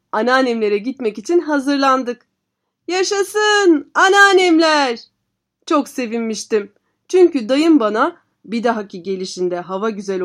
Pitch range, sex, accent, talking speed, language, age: 220-300 Hz, female, native, 95 wpm, Turkish, 30-49